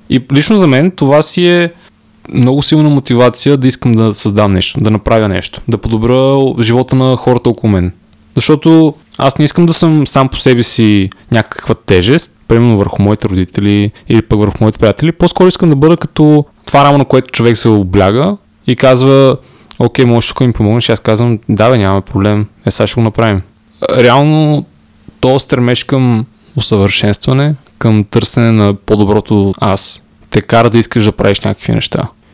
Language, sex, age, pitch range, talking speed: Bulgarian, male, 20-39, 110-140 Hz, 175 wpm